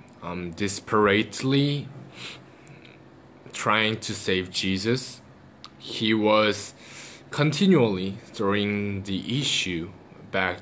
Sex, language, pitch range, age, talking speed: male, English, 100-120 Hz, 20-39, 75 wpm